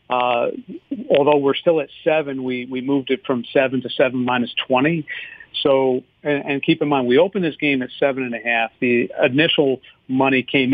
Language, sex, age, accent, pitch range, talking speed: English, male, 50-69, American, 125-155 Hz, 195 wpm